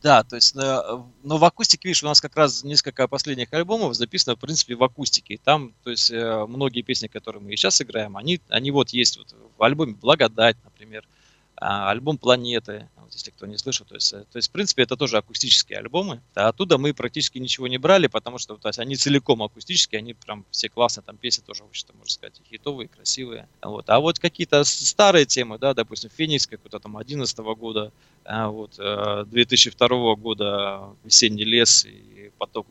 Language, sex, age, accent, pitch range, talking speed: Russian, male, 20-39, native, 110-140 Hz, 180 wpm